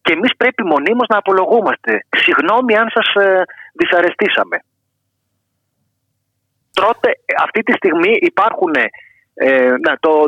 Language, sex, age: Greek, male, 30-49